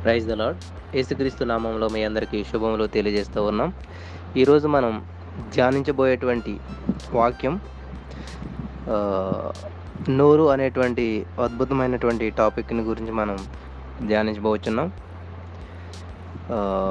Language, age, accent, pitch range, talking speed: Telugu, 20-39, native, 90-135 Hz, 75 wpm